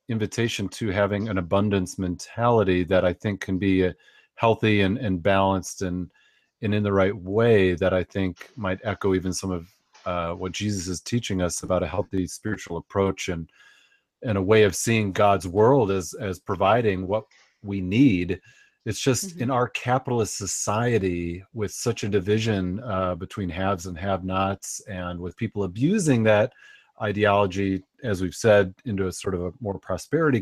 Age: 40-59